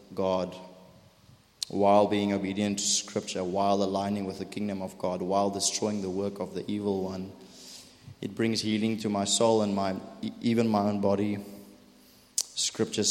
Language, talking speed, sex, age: English, 150 wpm, male, 30-49